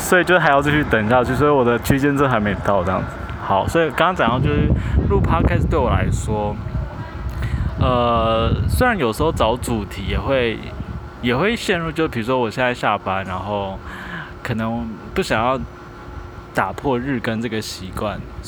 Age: 20-39